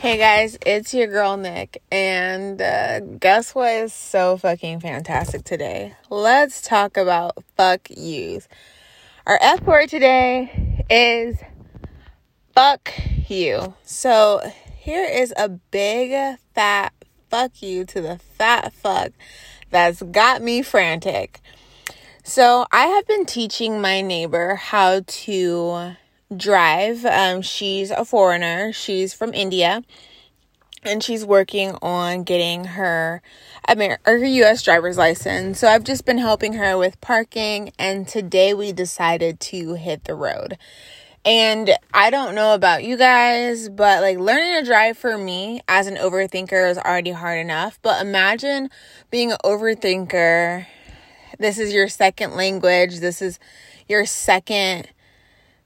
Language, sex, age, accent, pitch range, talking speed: English, female, 20-39, American, 185-230 Hz, 135 wpm